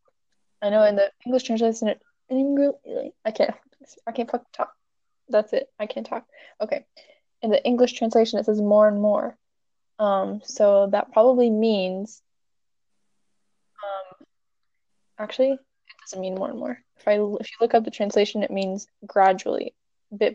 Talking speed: 155 wpm